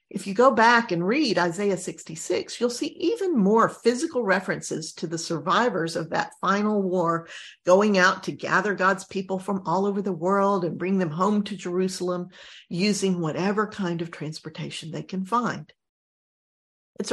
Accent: American